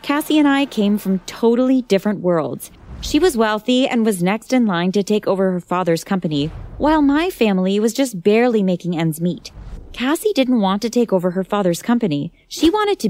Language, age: English, 20-39